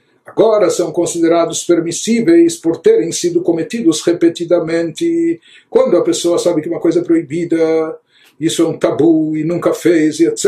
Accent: Brazilian